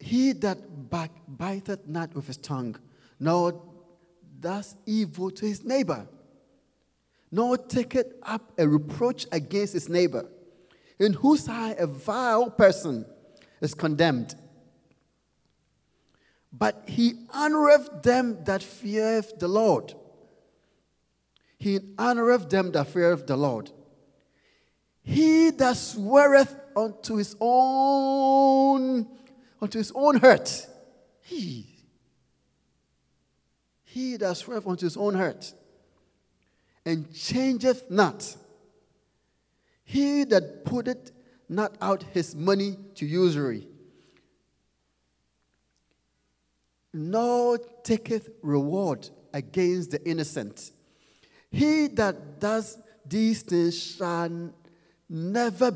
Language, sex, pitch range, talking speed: English, male, 160-240 Hz, 95 wpm